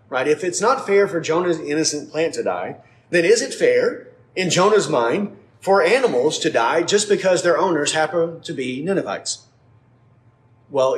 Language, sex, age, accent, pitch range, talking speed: English, male, 30-49, American, 130-180 Hz, 170 wpm